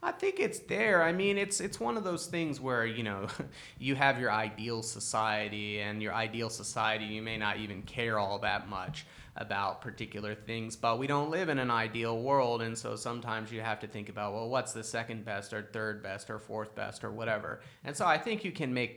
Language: English